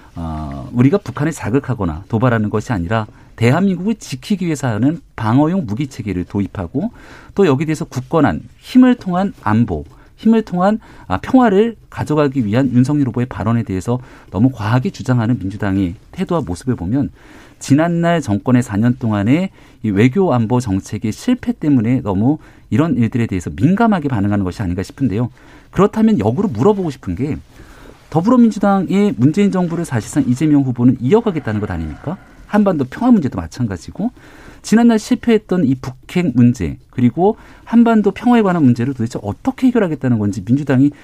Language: Korean